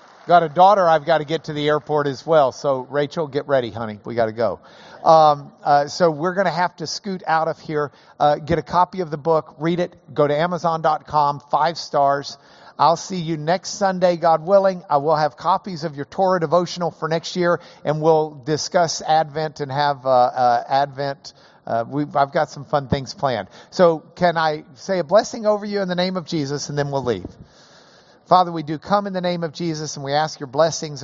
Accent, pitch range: American, 135-175 Hz